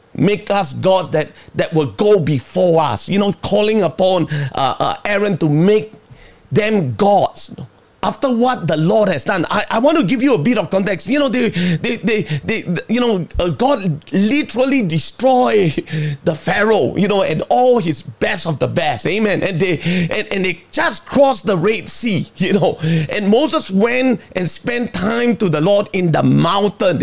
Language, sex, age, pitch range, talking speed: English, male, 40-59, 165-215 Hz, 185 wpm